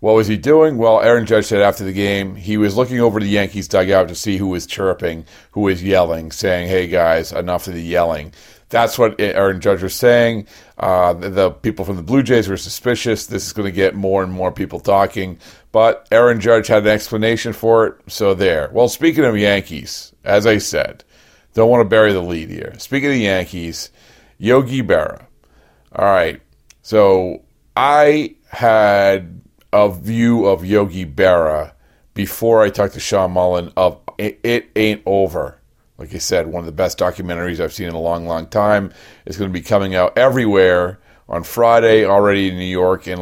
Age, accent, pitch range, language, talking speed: 40-59, American, 90-110 Hz, English, 190 wpm